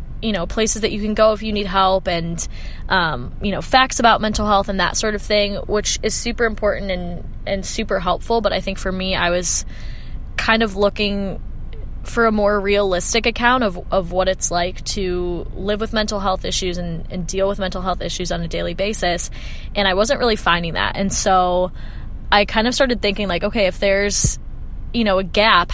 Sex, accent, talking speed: female, American, 210 wpm